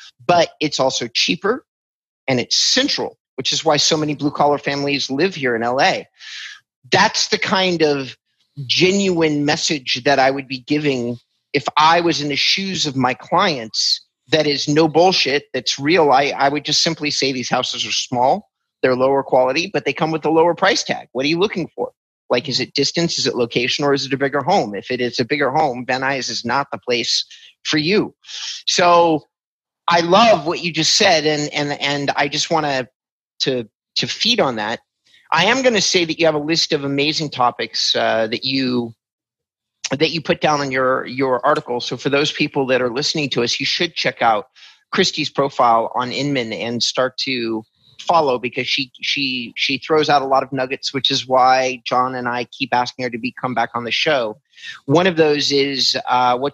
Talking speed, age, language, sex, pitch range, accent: 205 wpm, 30-49, English, male, 130-160 Hz, American